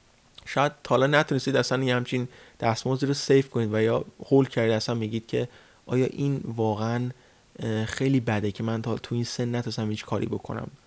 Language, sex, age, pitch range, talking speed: Persian, male, 30-49, 115-135 Hz, 170 wpm